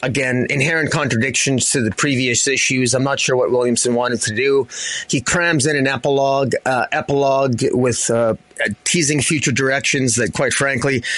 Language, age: English, 30-49